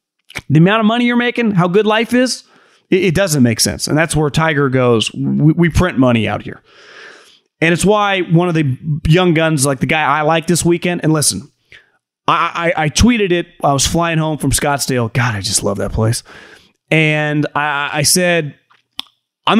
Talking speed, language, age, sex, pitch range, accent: 200 wpm, English, 30-49, male, 140-180 Hz, American